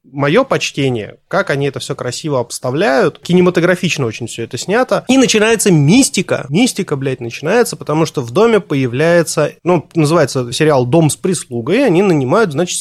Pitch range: 145-200 Hz